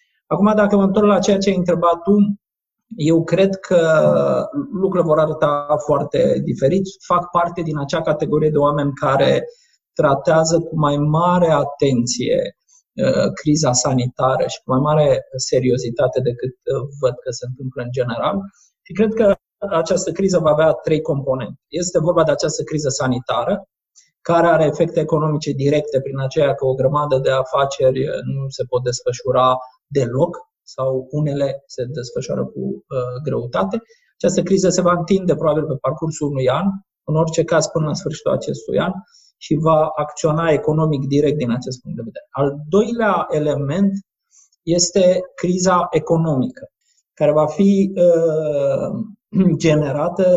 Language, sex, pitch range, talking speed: Romanian, male, 140-185 Hz, 145 wpm